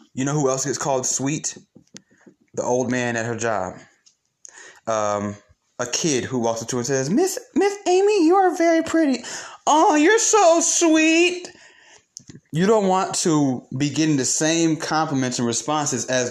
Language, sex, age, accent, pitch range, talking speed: English, male, 20-39, American, 120-165 Hz, 170 wpm